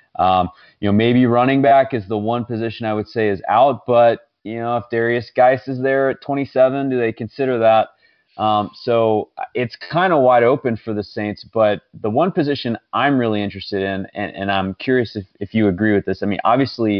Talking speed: 210 wpm